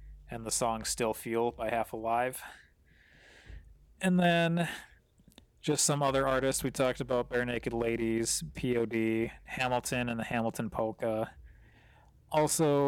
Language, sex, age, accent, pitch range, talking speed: English, male, 20-39, American, 110-125 Hz, 125 wpm